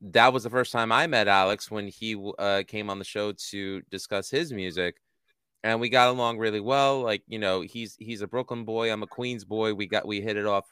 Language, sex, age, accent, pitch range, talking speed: English, male, 30-49, American, 95-115 Hz, 240 wpm